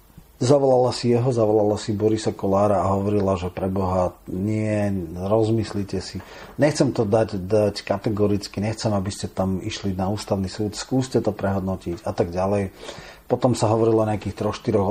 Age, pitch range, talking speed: 40-59, 95-115 Hz, 155 wpm